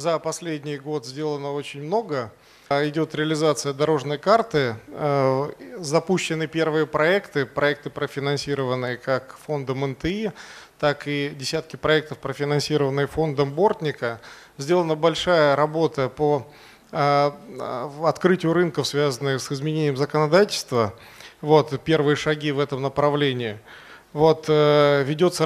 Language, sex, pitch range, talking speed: Russian, male, 140-160 Hz, 100 wpm